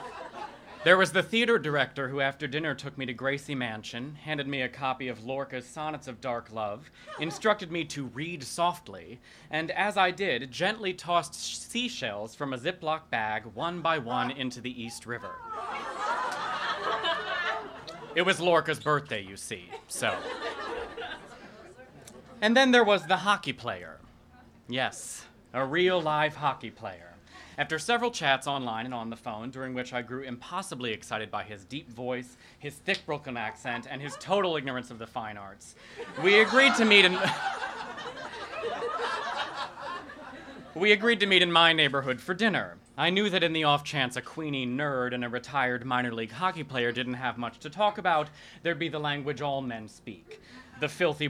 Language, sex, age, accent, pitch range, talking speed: English, male, 30-49, American, 125-180 Hz, 165 wpm